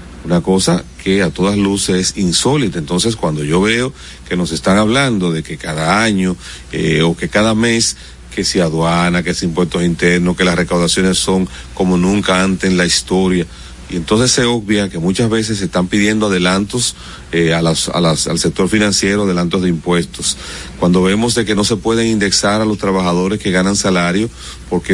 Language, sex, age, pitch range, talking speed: Spanish, male, 40-59, 90-115 Hz, 190 wpm